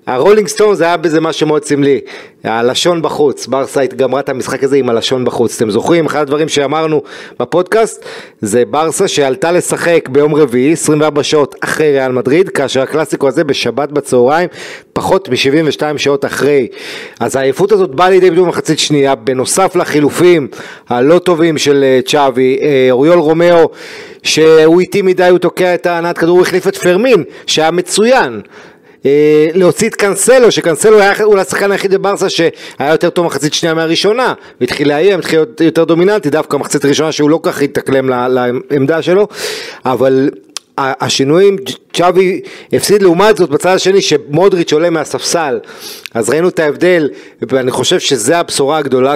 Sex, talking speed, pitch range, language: male, 150 wpm, 140-180 Hz, Hebrew